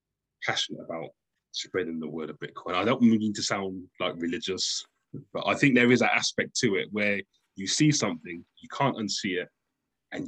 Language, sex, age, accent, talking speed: English, male, 20-39, British, 185 wpm